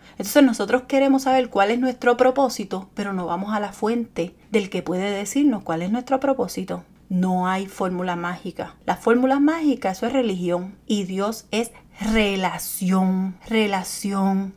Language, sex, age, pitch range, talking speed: Spanish, female, 30-49, 185-255 Hz, 150 wpm